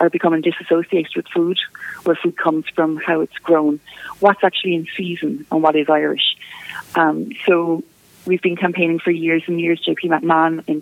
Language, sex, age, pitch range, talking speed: English, female, 30-49, 155-180 Hz, 170 wpm